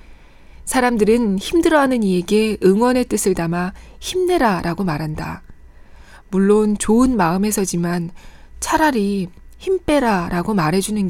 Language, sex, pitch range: Korean, female, 175-245 Hz